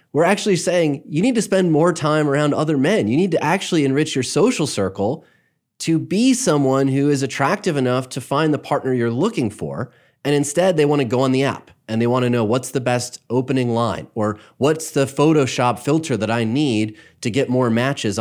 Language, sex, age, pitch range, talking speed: English, male, 30-49, 105-145 Hz, 215 wpm